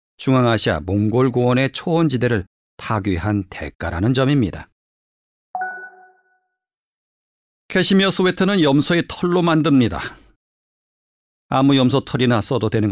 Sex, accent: male, native